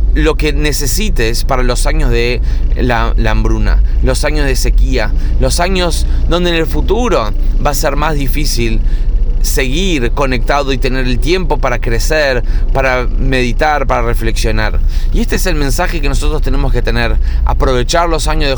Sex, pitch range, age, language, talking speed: male, 120-145 Hz, 20-39, Spanish, 165 wpm